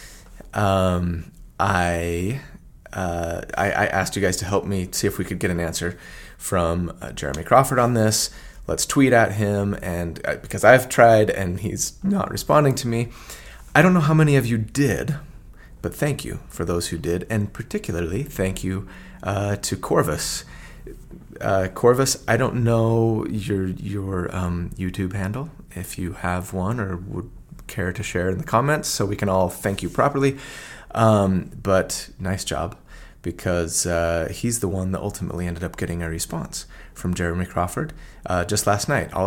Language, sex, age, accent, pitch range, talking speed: English, male, 30-49, American, 90-115 Hz, 175 wpm